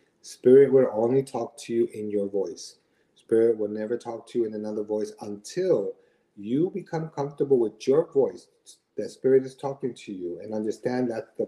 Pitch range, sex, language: 105-135 Hz, male, English